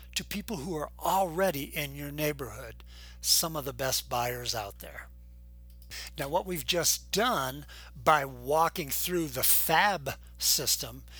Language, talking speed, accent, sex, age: English, 140 wpm, American, male, 60-79